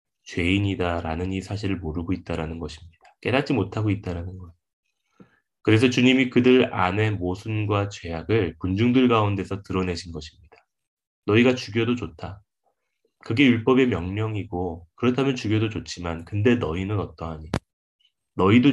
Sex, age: male, 20-39